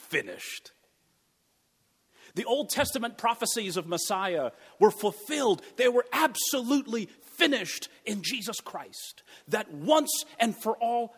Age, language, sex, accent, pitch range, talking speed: 40-59, English, male, American, 160-230 Hz, 115 wpm